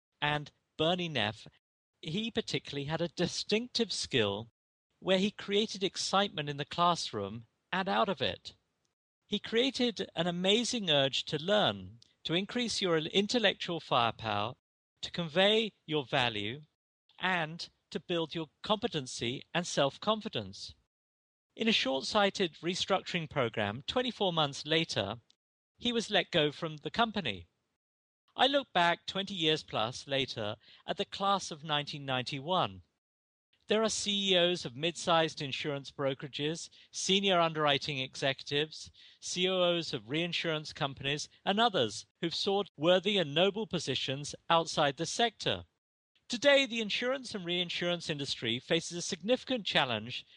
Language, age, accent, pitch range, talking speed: English, 50-69, British, 135-195 Hz, 125 wpm